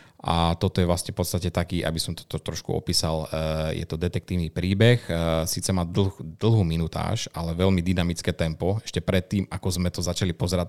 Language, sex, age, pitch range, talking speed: Slovak, male, 30-49, 90-105 Hz, 180 wpm